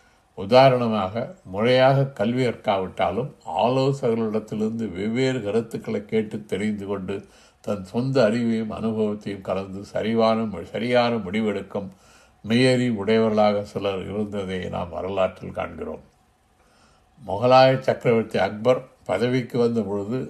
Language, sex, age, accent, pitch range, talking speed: Tamil, male, 60-79, native, 100-120 Hz, 90 wpm